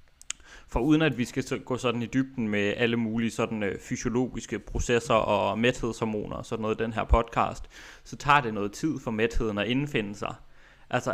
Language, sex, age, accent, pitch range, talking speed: Danish, male, 20-39, native, 115-130 Hz, 190 wpm